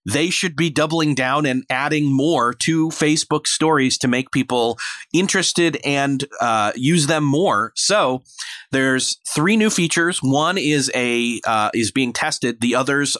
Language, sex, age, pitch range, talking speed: English, male, 30-49, 130-170 Hz, 155 wpm